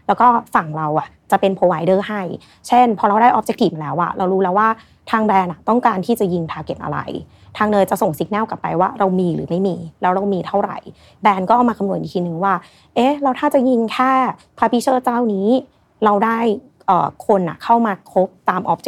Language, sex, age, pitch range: Thai, female, 30-49, 180-230 Hz